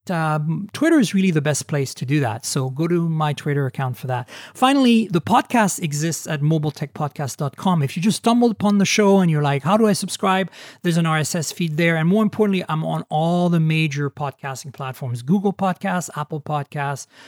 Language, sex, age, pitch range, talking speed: English, male, 40-59, 150-200 Hz, 200 wpm